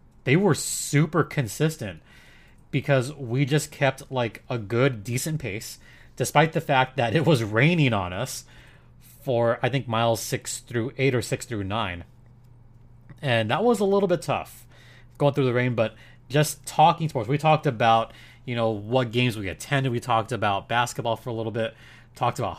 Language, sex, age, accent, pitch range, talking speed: English, male, 30-49, American, 120-145 Hz, 180 wpm